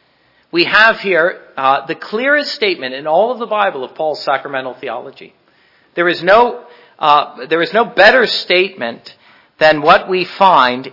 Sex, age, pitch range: male, 50-69, 150-210 Hz